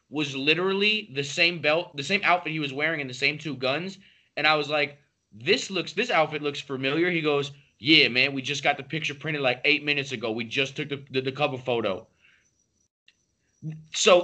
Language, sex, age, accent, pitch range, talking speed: English, male, 20-39, American, 130-175 Hz, 205 wpm